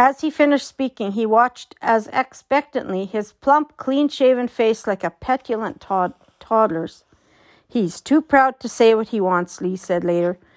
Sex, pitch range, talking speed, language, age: female, 205-260 Hz, 155 wpm, English, 60-79